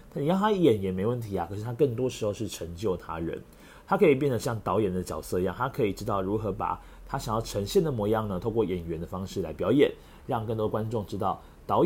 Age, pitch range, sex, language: 30-49, 95-135 Hz, male, Chinese